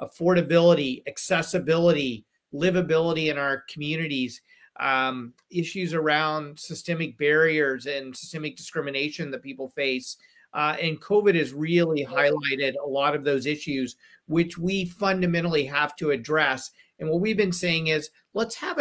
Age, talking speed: 40-59, 135 wpm